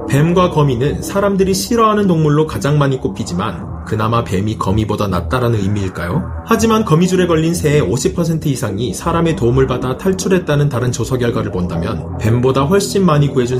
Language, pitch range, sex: Korean, 115-160 Hz, male